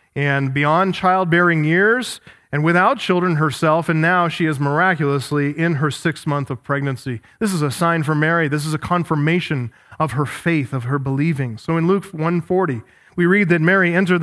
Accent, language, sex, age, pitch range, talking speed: American, English, male, 40-59, 155-210 Hz, 185 wpm